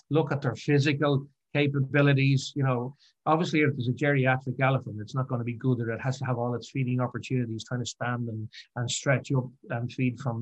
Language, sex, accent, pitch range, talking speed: English, male, Irish, 125-145 Hz, 220 wpm